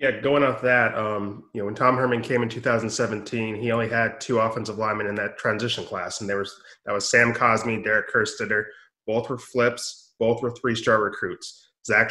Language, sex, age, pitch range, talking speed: English, male, 20-39, 110-125 Hz, 200 wpm